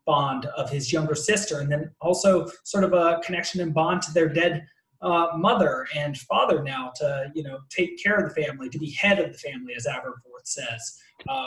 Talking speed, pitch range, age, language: 210 wpm, 150-180 Hz, 20-39, English